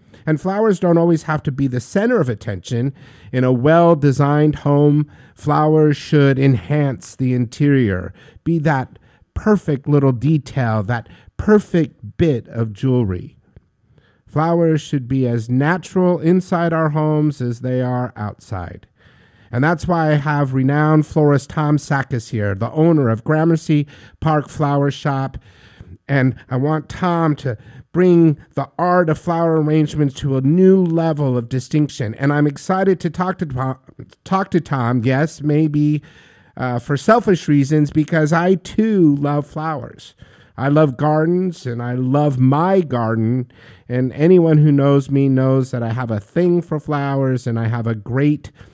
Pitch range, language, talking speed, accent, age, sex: 125-155 Hz, English, 150 wpm, American, 50-69, male